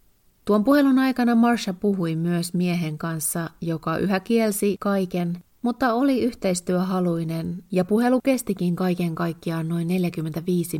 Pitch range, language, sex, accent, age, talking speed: 165-200 Hz, Finnish, female, native, 30-49, 120 wpm